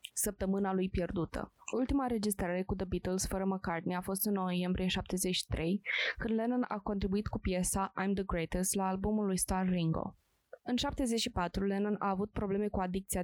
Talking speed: 170 wpm